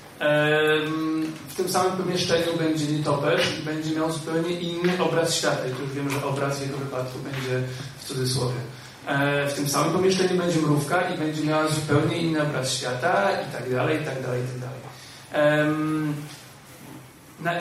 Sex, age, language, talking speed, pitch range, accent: male, 30-49, Polish, 160 wpm, 140-165 Hz, native